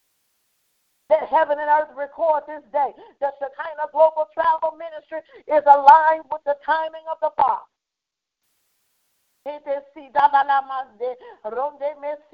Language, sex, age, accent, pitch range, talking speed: English, female, 40-59, American, 285-330 Hz, 115 wpm